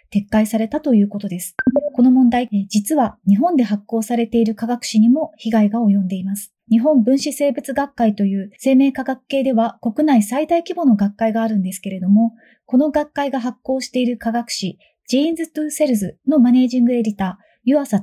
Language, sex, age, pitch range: Japanese, female, 30-49, 205-270 Hz